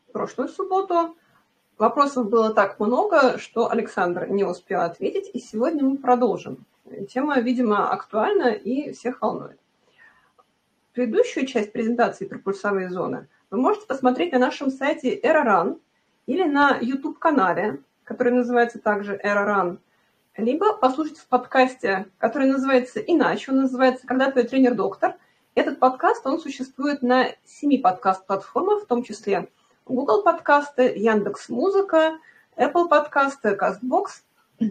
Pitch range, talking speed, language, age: 220-295 Hz, 120 wpm, Russian, 30-49